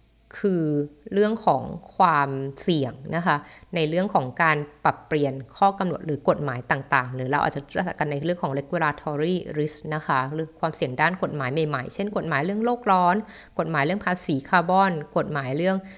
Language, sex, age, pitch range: Thai, female, 20-39, 145-190 Hz